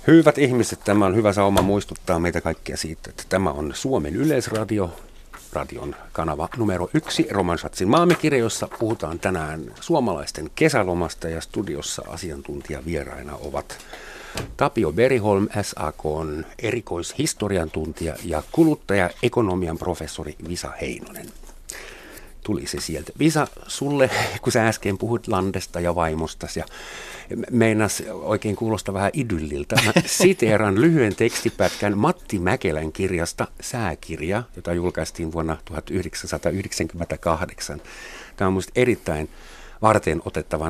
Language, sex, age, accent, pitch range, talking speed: Finnish, male, 50-69, native, 85-110 Hz, 110 wpm